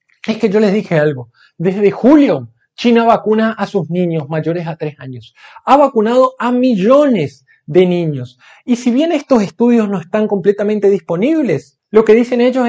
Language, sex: Spanish, male